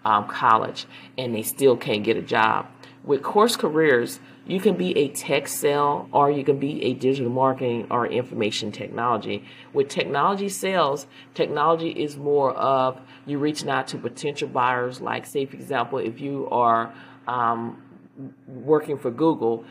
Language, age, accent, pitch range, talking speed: English, 40-59, American, 125-150 Hz, 160 wpm